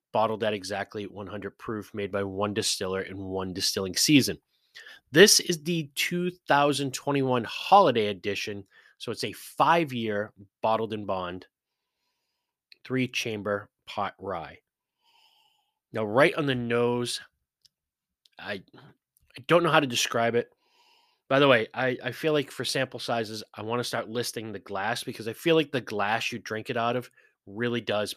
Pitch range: 110-170 Hz